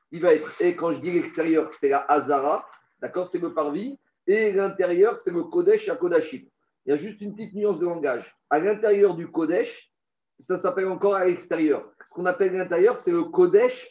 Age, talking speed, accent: 40-59, 205 wpm, French